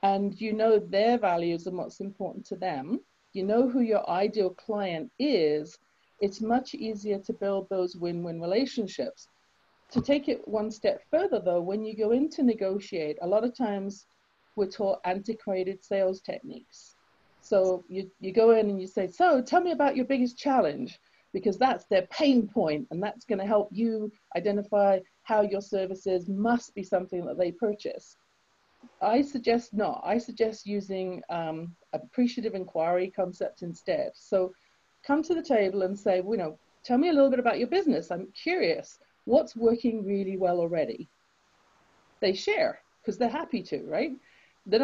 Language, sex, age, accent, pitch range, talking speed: English, female, 40-59, British, 195-250 Hz, 165 wpm